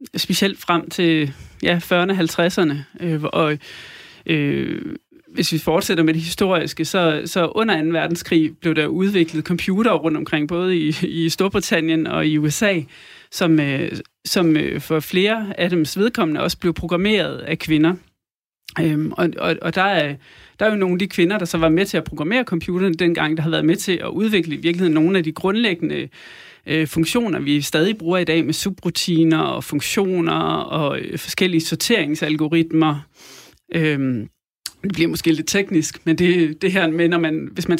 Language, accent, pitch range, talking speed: Danish, native, 160-190 Hz, 170 wpm